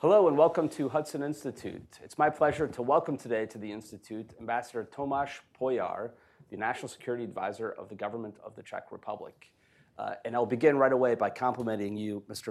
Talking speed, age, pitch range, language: 185 wpm, 30-49, 105-130 Hz, English